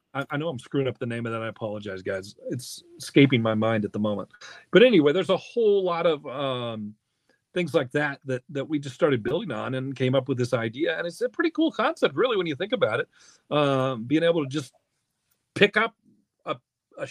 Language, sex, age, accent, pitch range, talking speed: English, male, 40-59, American, 130-195 Hz, 225 wpm